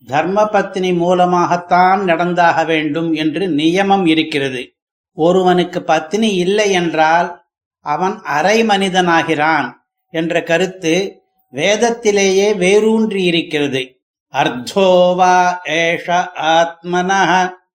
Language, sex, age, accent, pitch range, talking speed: Tamil, male, 60-79, native, 175-215 Hz, 80 wpm